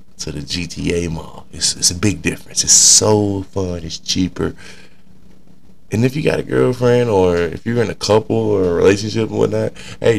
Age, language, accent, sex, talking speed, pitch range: 20-39, English, American, male, 190 wpm, 90-120 Hz